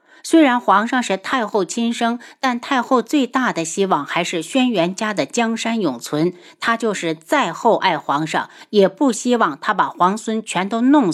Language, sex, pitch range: Chinese, female, 180-260 Hz